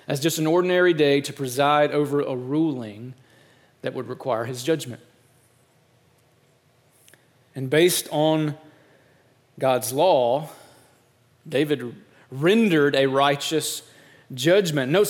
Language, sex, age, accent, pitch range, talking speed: English, male, 30-49, American, 125-165 Hz, 105 wpm